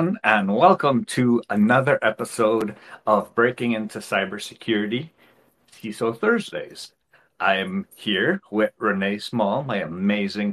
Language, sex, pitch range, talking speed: English, male, 105-130 Hz, 110 wpm